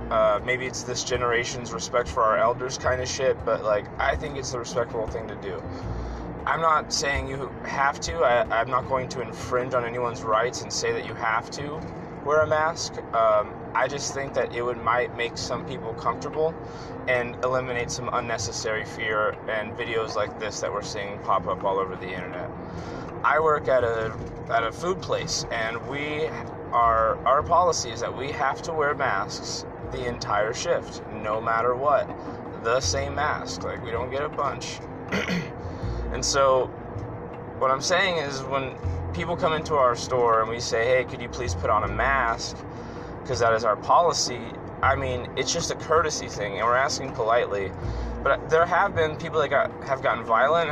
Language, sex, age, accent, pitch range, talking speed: English, male, 20-39, American, 115-140 Hz, 190 wpm